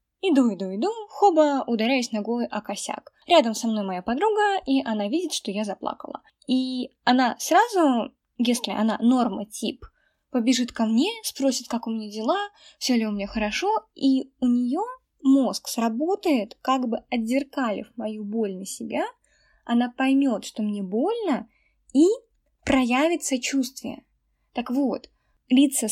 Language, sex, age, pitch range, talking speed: Russian, female, 10-29, 225-295 Hz, 145 wpm